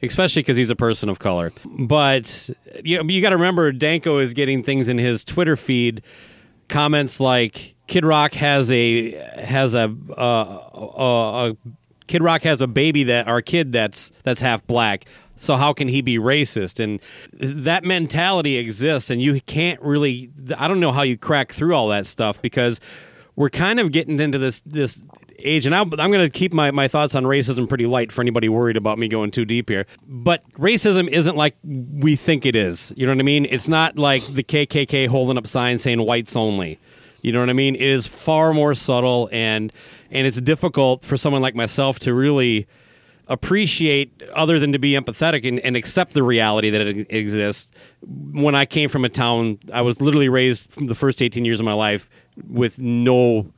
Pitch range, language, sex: 120-150 Hz, English, male